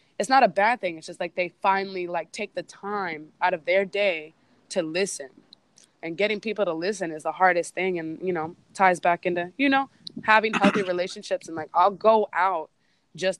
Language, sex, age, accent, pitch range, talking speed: English, female, 20-39, American, 165-195 Hz, 205 wpm